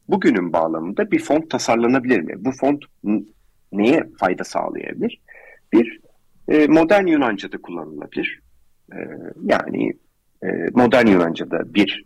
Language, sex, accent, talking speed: Turkish, male, native, 95 wpm